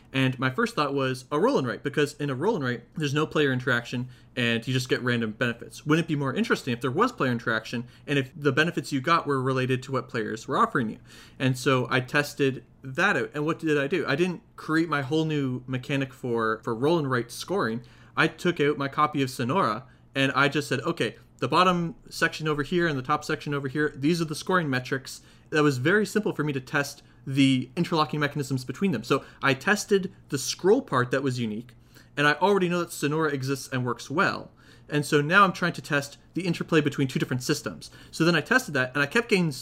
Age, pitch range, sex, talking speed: 30-49, 130-155 Hz, male, 225 wpm